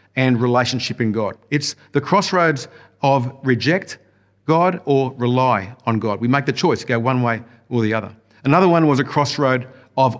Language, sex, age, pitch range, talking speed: English, male, 50-69, 115-150 Hz, 180 wpm